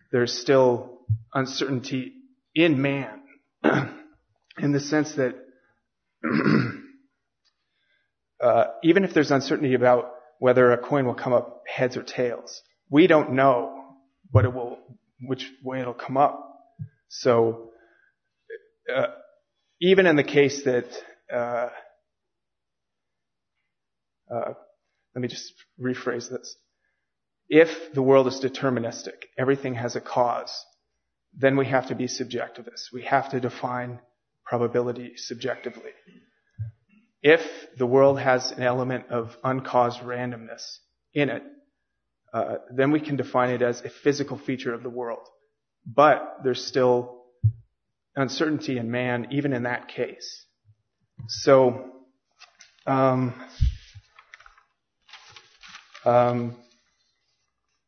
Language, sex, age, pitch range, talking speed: English, male, 30-49, 120-140 Hz, 110 wpm